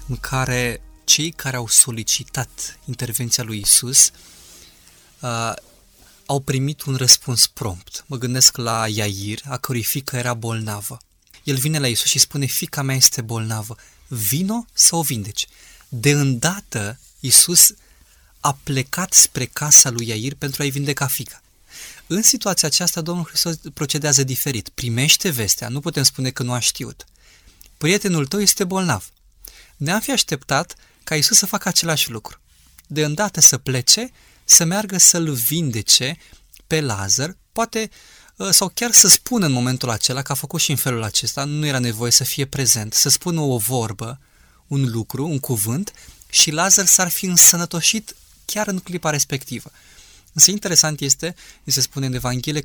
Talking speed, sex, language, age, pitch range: 155 wpm, male, Romanian, 20-39, 115-155 Hz